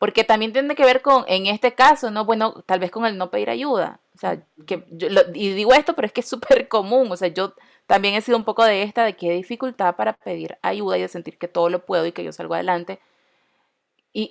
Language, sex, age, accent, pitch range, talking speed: Spanish, female, 30-49, Venezuelan, 175-235 Hz, 255 wpm